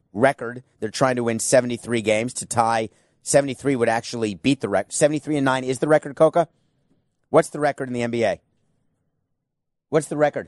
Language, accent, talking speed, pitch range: English, American, 195 wpm, 125-150 Hz